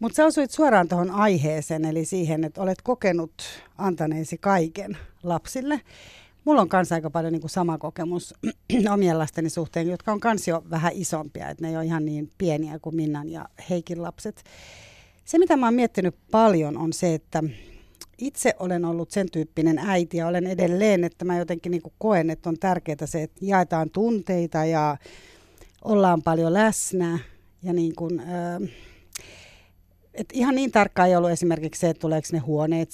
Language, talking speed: Finnish, 165 wpm